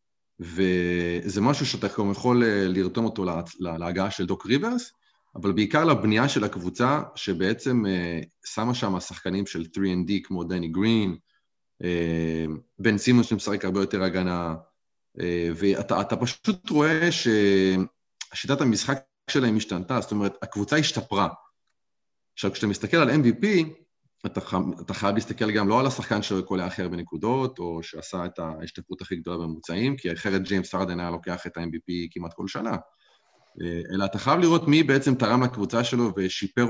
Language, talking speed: Hebrew, 140 wpm